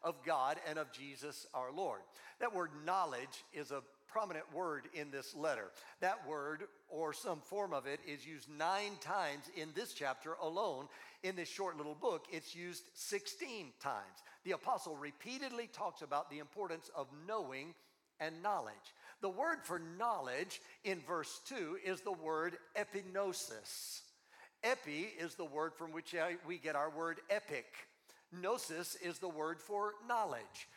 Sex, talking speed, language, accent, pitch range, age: male, 155 wpm, English, American, 155-195 Hz, 60-79